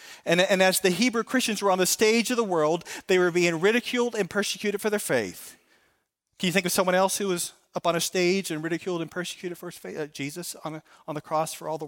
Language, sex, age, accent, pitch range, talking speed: English, male, 40-59, American, 165-215 Hz, 260 wpm